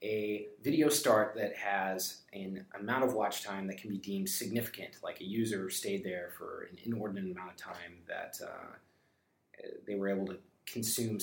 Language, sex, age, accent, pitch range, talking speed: English, male, 30-49, American, 95-115 Hz, 175 wpm